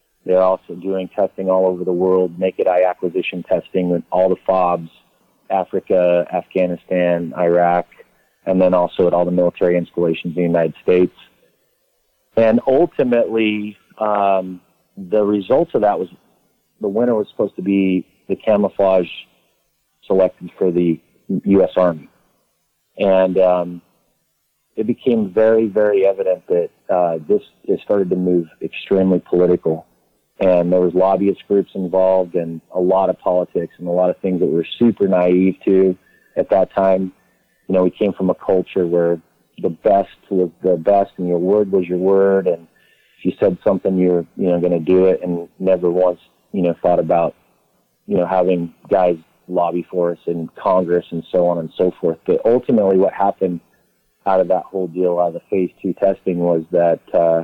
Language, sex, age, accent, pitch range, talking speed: English, male, 30-49, American, 90-95 Hz, 170 wpm